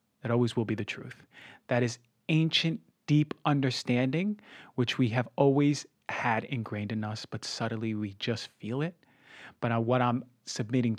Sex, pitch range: male, 115-150 Hz